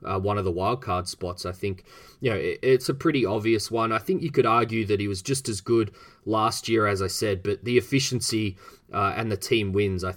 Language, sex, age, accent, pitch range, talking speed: English, male, 20-39, Australian, 95-115 Hz, 250 wpm